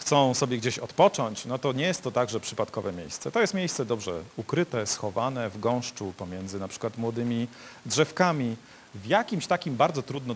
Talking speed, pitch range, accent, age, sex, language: 175 wpm, 115-140 Hz, native, 40-59, male, Polish